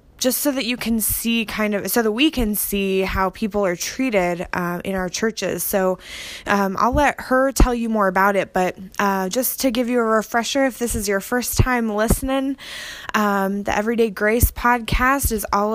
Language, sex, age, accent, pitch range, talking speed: English, female, 20-39, American, 185-230 Hz, 200 wpm